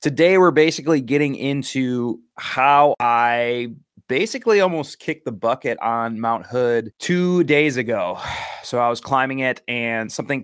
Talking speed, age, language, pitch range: 145 wpm, 20-39, English, 115-140 Hz